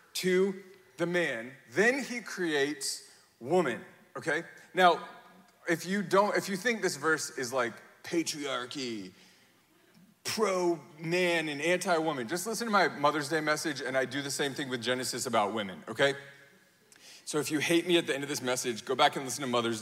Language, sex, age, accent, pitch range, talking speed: English, male, 30-49, American, 140-195 Hz, 180 wpm